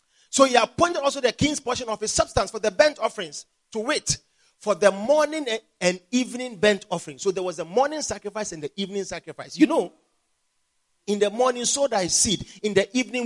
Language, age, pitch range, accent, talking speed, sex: English, 40-59, 210-315 Hz, Nigerian, 200 wpm, male